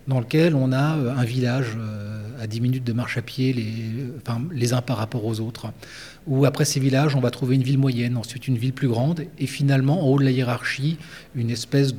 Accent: French